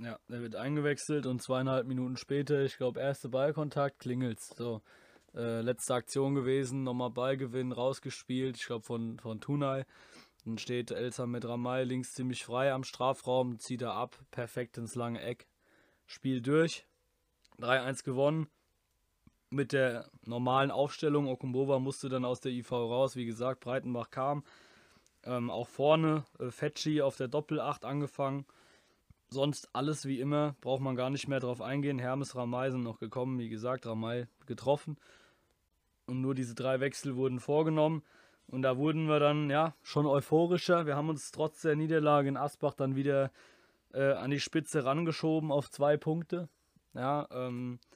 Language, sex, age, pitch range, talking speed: German, male, 20-39, 125-145 Hz, 155 wpm